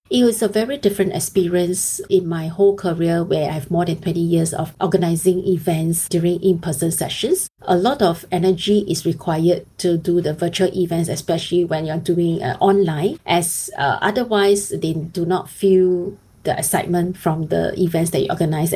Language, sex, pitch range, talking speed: English, female, 165-185 Hz, 175 wpm